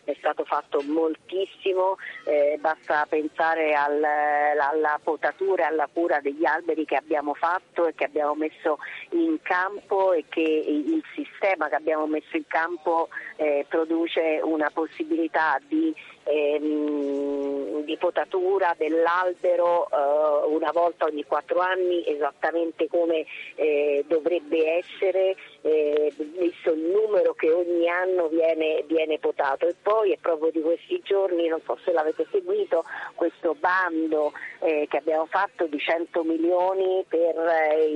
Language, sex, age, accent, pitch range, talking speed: Italian, female, 40-59, native, 155-180 Hz, 135 wpm